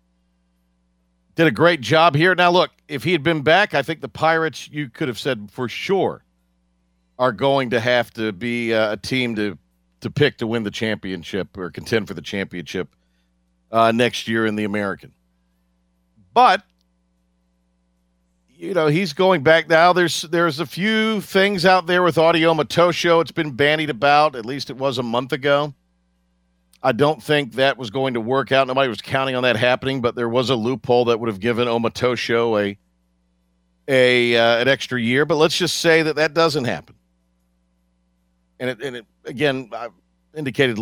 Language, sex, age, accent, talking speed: English, male, 50-69, American, 180 wpm